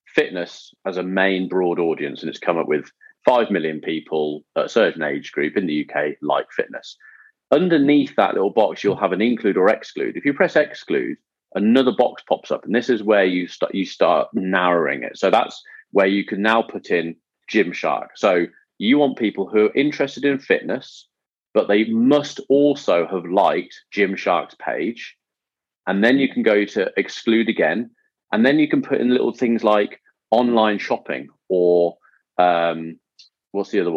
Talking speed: 180 wpm